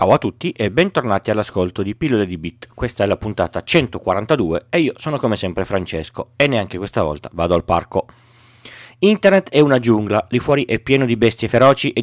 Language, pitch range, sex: Italian, 105-140 Hz, male